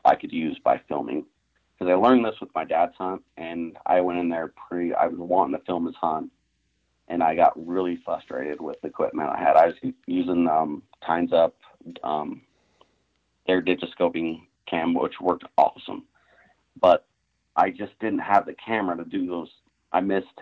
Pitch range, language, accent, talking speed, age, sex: 85-95 Hz, English, American, 180 wpm, 30-49, male